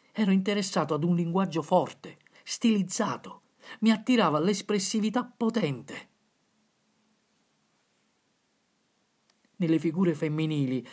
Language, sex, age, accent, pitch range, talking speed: Italian, male, 50-69, native, 155-210 Hz, 75 wpm